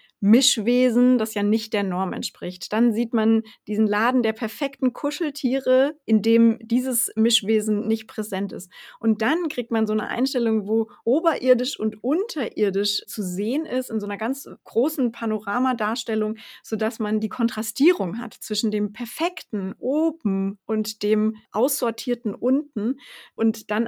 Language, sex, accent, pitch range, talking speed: German, female, German, 210-250 Hz, 145 wpm